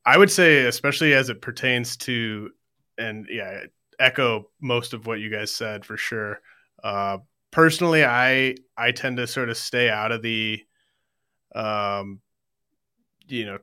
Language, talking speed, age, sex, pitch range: English, 150 wpm, 30-49, male, 110-125 Hz